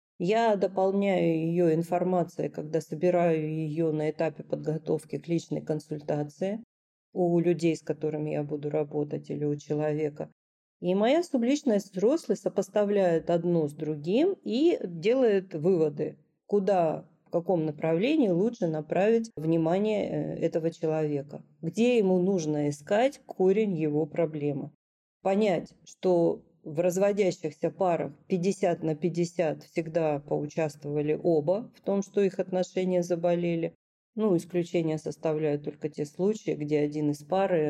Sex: female